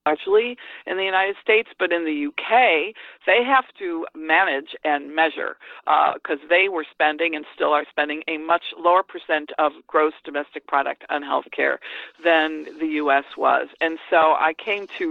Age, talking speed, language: 50-69, 175 wpm, English